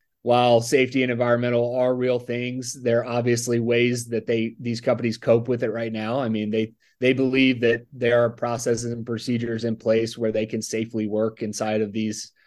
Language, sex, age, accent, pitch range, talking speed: English, male, 30-49, American, 110-125 Hz, 195 wpm